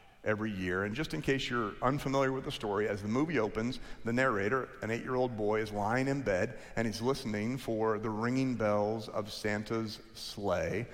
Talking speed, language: 185 wpm, English